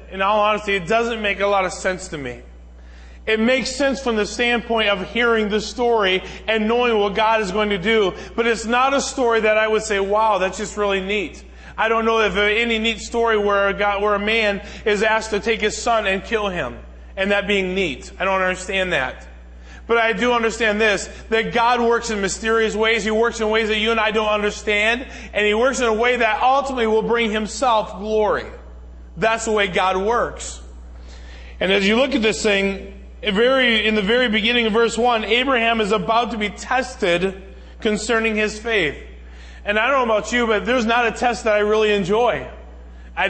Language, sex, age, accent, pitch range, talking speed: English, male, 20-39, American, 200-230 Hz, 210 wpm